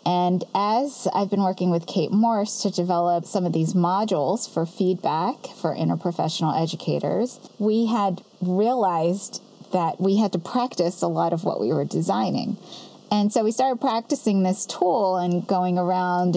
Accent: American